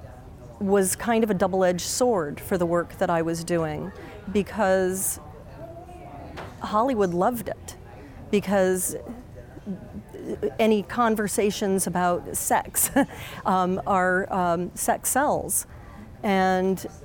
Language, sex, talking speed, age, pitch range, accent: English, female, 100 wpm, 40-59, 170-190 Hz, American